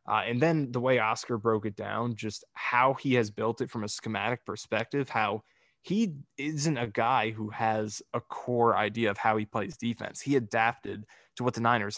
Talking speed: 200 wpm